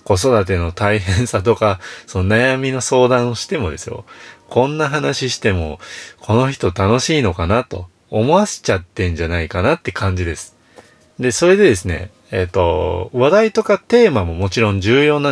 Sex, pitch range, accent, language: male, 90-125 Hz, native, Japanese